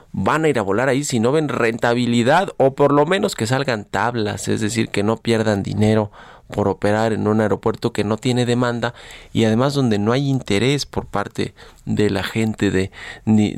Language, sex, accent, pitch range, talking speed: Spanish, male, Mexican, 100-120 Hz, 200 wpm